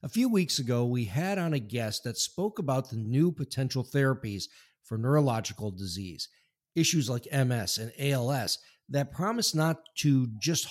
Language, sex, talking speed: English, male, 165 wpm